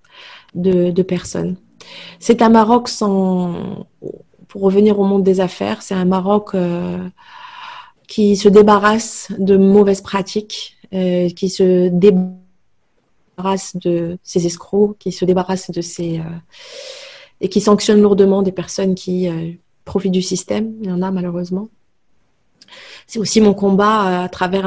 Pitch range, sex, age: 180-200 Hz, female, 30-49